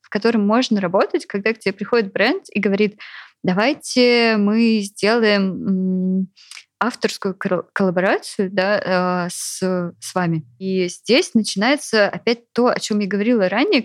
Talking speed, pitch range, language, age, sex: 125 wpm, 180-215 Hz, Russian, 20-39, female